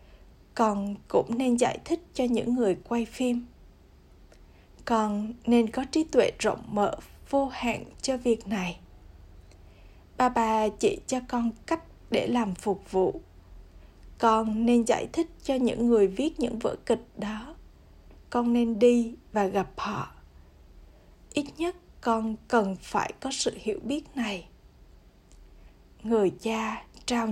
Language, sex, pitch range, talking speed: Vietnamese, female, 200-250 Hz, 140 wpm